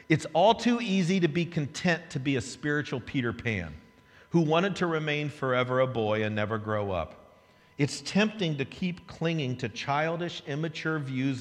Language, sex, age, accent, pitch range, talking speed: English, male, 50-69, American, 105-150 Hz, 175 wpm